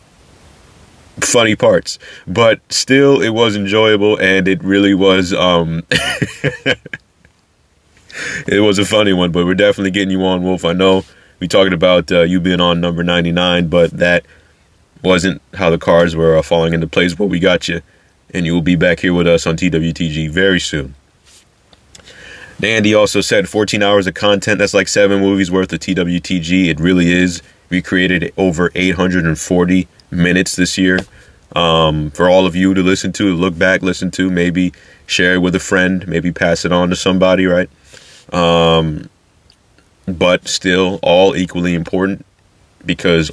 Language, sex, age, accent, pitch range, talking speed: English, male, 30-49, American, 85-95 Hz, 170 wpm